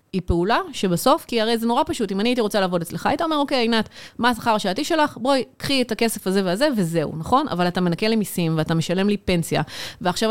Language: Hebrew